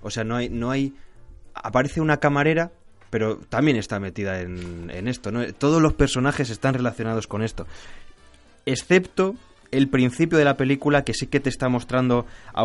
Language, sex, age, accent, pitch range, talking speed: Spanish, male, 20-39, Spanish, 100-125 Hz, 175 wpm